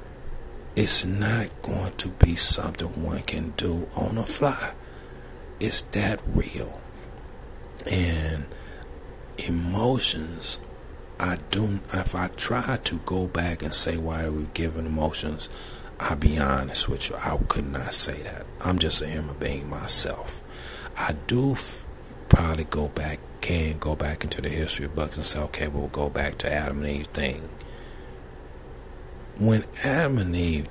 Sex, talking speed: male, 150 wpm